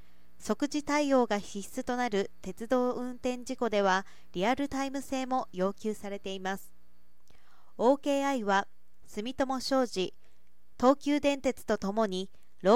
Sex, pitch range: female, 195-265 Hz